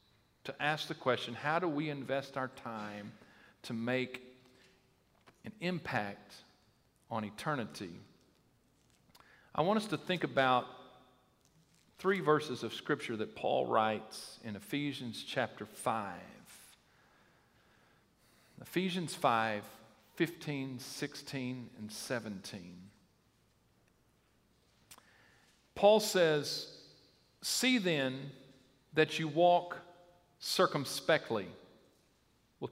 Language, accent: English, American